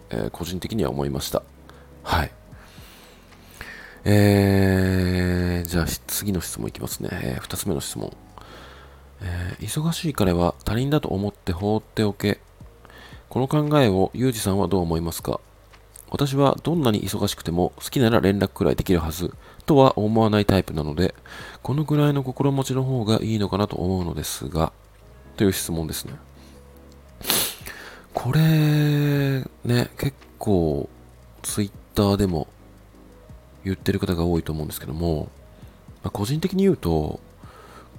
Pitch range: 85-130 Hz